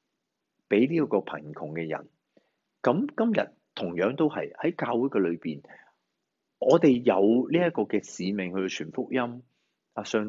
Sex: male